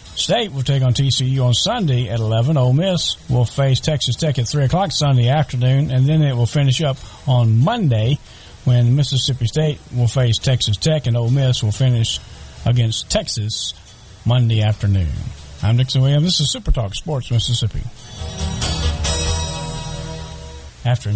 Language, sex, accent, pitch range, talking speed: English, male, American, 110-140 Hz, 155 wpm